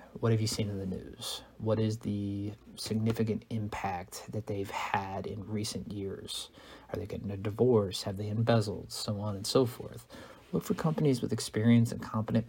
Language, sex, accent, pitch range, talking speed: English, male, American, 105-115 Hz, 185 wpm